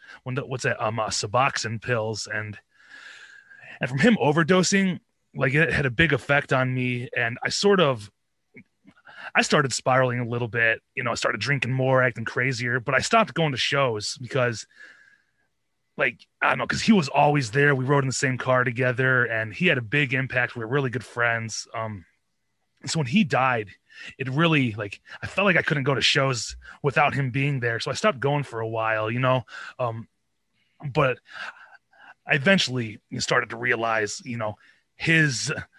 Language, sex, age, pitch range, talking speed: English, male, 20-39, 115-145 Hz, 190 wpm